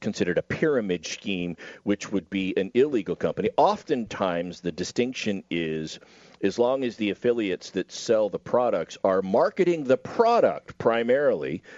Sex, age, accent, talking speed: male, 50-69, American, 145 wpm